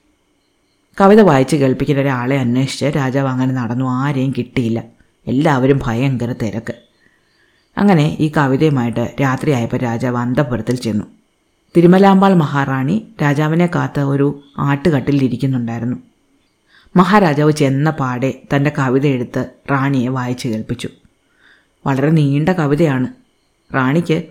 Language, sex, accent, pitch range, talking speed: Malayalam, female, native, 125-150 Hz, 95 wpm